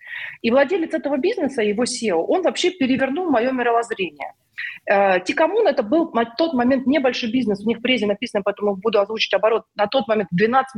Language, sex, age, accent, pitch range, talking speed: Russian, female, 30-49, native, 205-295 Hz, 180 wpm